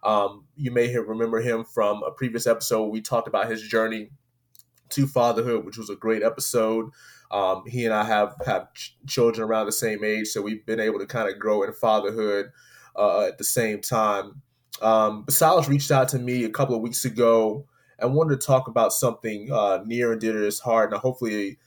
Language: English